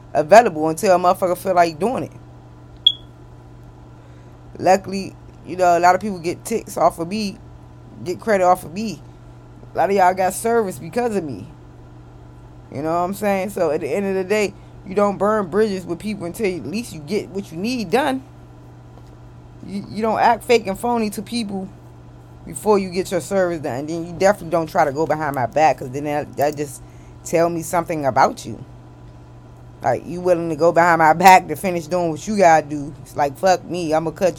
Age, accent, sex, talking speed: 20-39, American, female, 205 wpm